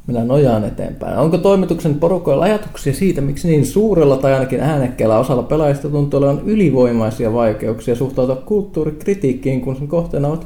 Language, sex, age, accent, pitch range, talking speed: Finnish, male, 20-39, native, 135-170 Hz, 150 wpm